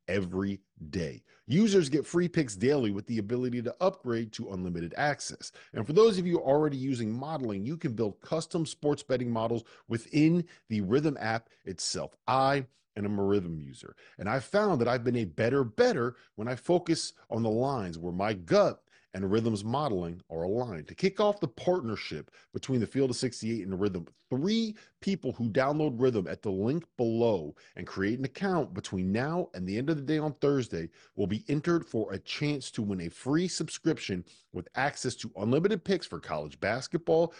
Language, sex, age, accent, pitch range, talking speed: English, male, 40-59, American, 105-160 Hz, 190 wpm